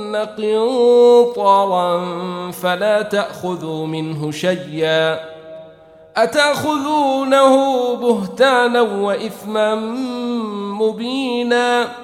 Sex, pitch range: male, 155-200 Hz